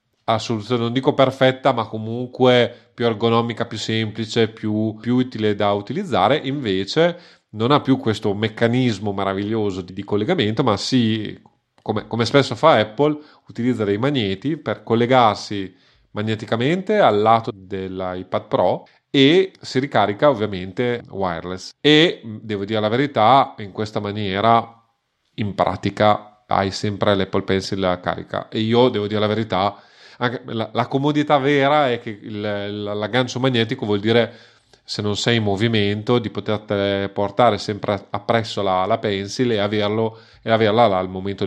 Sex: male